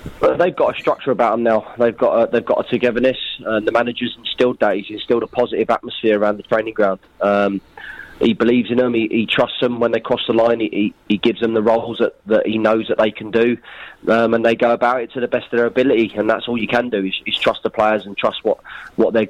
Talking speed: 265 wpm